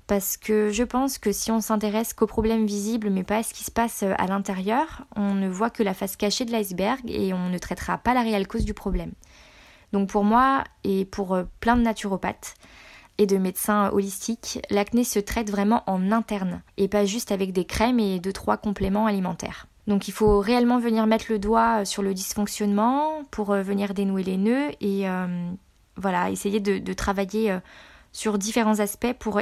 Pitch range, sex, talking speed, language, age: 200-230 Hz, female, 195 wpm, French, 20-39